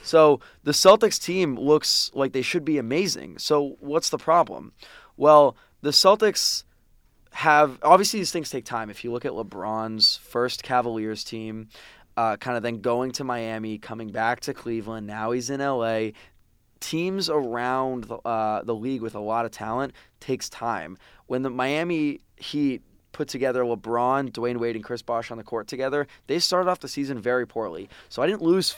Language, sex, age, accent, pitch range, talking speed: English, male, 20-39, American, 115-140 Hz, 175 wpm